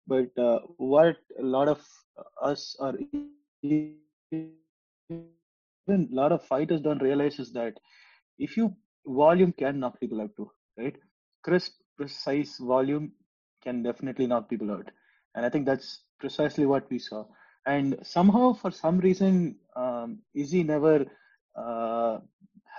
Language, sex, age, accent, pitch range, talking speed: English, male, 20-39, Indian, 130-165 Hz, 135 wpm